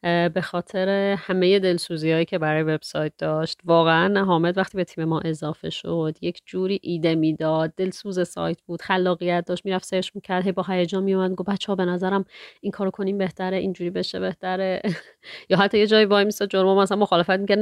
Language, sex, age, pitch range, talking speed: Persian, female, 30-49, 165-200 Hz, 185 wpm